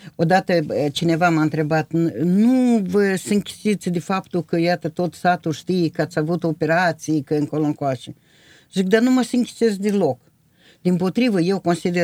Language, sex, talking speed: Romanian, female, 155 wpm